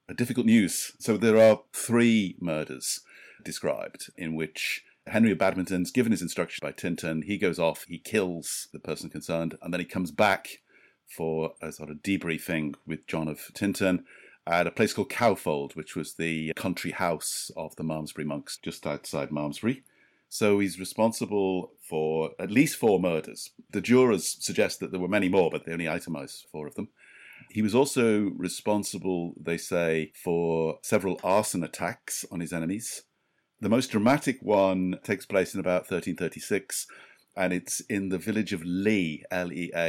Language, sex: English, male